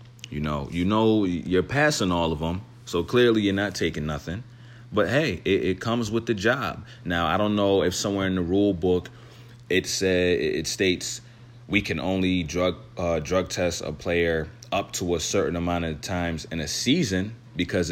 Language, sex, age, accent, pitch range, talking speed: English, male, 30-49, American, 90-120 Hz, 190 wpm